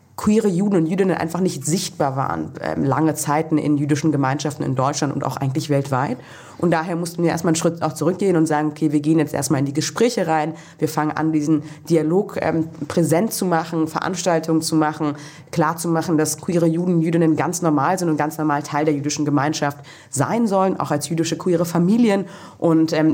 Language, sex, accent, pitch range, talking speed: German, female, German, 155-180 Hz, 200 wpm